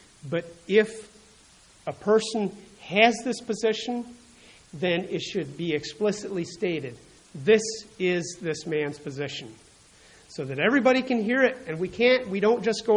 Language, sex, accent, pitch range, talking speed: English, male, American, 155-205 Hz, 145 wpm